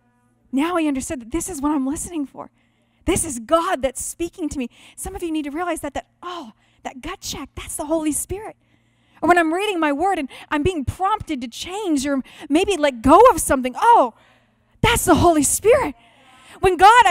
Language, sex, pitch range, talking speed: English, female, 265-380 Hz, 205 wpm